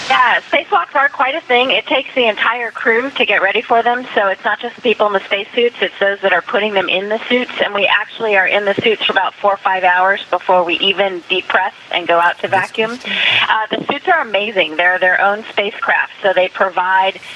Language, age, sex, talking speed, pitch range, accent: English, 30-49, female, 230 wpm, 190-230 Hz, American